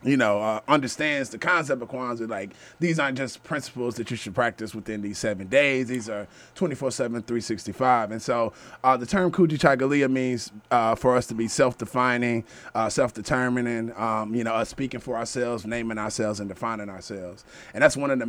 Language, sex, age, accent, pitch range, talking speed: English, male, 30-49, American, 110-135 Hz, 185 wpm